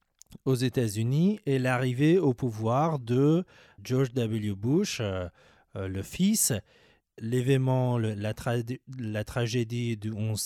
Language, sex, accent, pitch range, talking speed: English, male, French, 100-130 Hz, 120 wpm